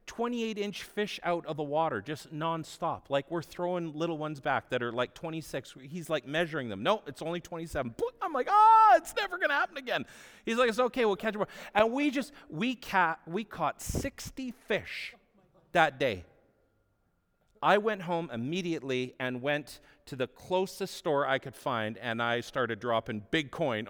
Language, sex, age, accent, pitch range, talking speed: English, male, 40-59, American, 135-195 Hz, 180 wpm